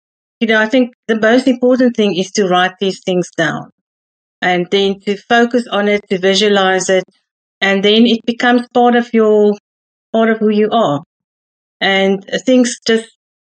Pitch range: 185-225 Hz